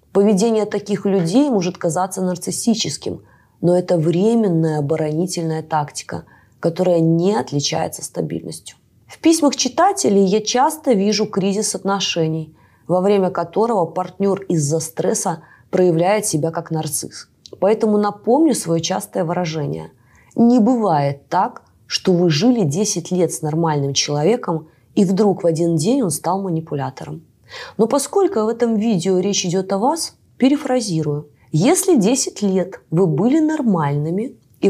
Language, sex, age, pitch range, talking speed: Russian, female, 20-39, 160-215 Hz, 130 wpm